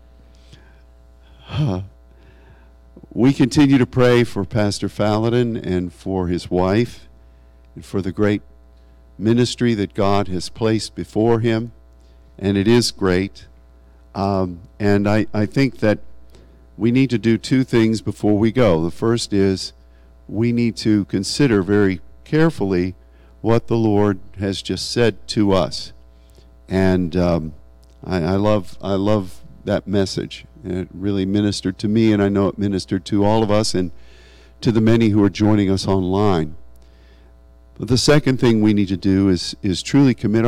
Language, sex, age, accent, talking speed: English, male, 50-69, American, 155 wpm